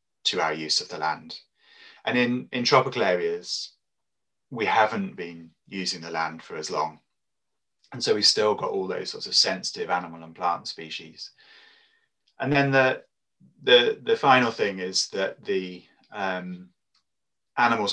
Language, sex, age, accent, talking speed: English, male, 30-49, British, 155 wpm